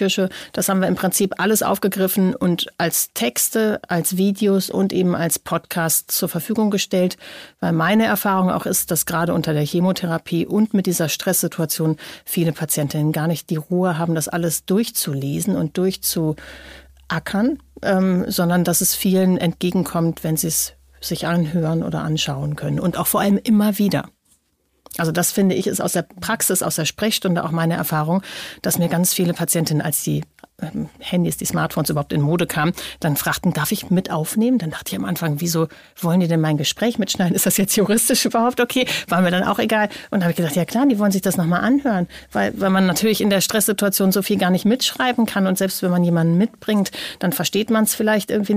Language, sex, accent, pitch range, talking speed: German, female, German, 170-210 Hz, 200 wpm